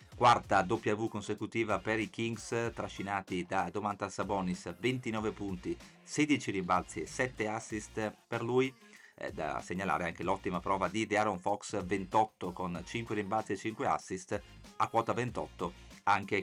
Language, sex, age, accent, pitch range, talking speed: Italian, male, 40-59, native, 95-115 Hz, 140 wpm